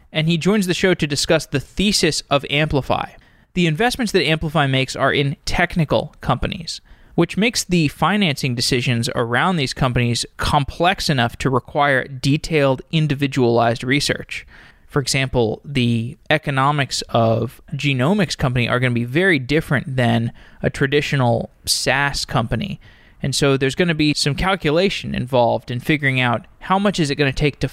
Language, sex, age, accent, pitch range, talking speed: English, male, 20-39, American, 125-165 Hz, 160 wpm